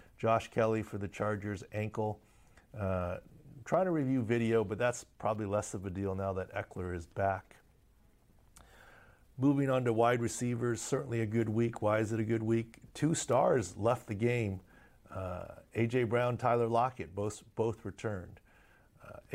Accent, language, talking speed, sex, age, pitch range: American, English, 160 wpm, male, 50-69, 100-115 Hz